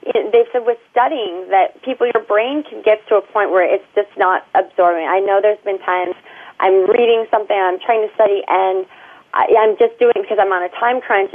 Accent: American